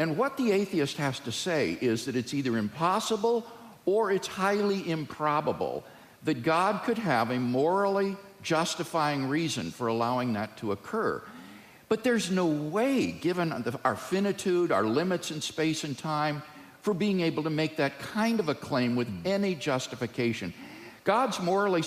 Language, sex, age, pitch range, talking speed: English, male, 50-69, 125-200 Hz, 155 wpm